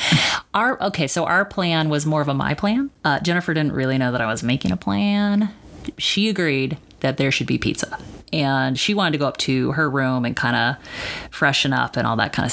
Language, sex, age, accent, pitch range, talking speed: English, female, 30-49, American, 130-160 Hz, 230 wpm